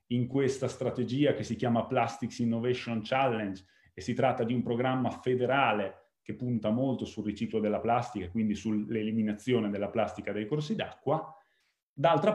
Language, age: Italian, 30-49